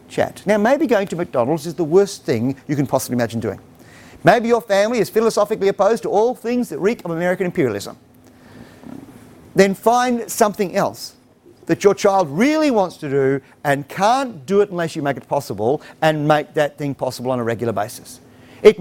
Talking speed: 190 wpm